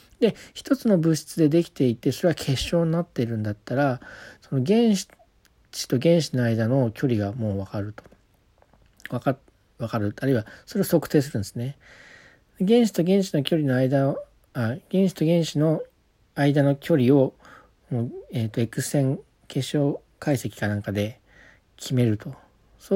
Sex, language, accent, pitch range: male, Japanese, native, 115-160 Hz